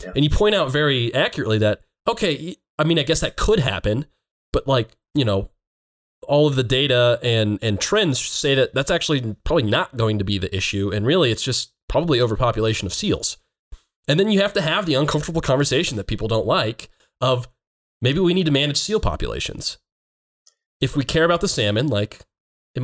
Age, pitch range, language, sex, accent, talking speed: 20-39, 105-140 Hz, English, male, American, 195 wpm